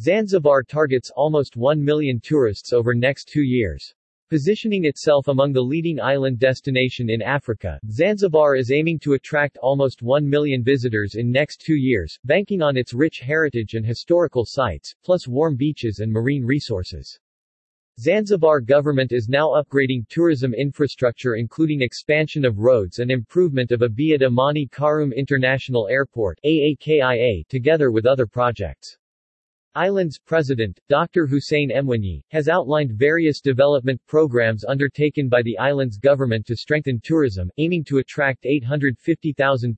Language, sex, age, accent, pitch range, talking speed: English, male, 40-59, American, 125-150 Hz, 135 wpm